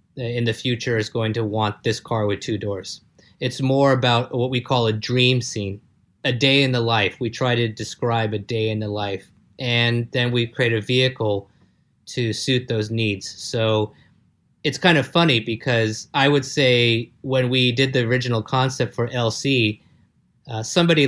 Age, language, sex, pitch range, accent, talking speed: 30-49, English, male, 110-130 Hz, American, 180 wpm